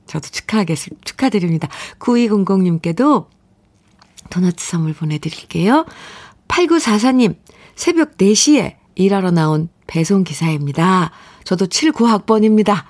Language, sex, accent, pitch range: Korean, female, native, 170-240 Hz